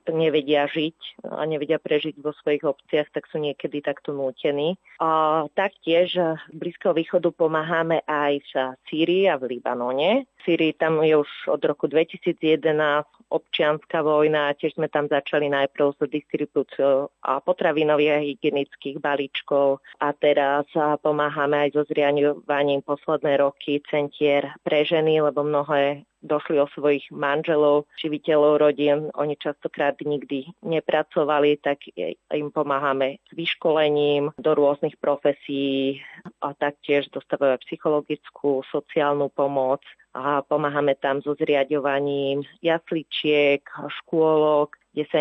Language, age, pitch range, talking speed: Slovak, 30-49, 140-155 Hz, 125 wpm